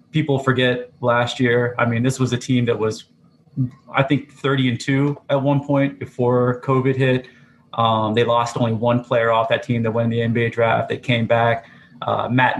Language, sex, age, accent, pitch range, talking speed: English, male, 20-39, American, 110-125 Hz, 205 wpm